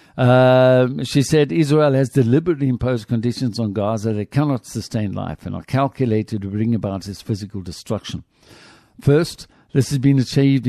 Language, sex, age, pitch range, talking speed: English, male, 60-79, 115-140 Hz, 155 wpm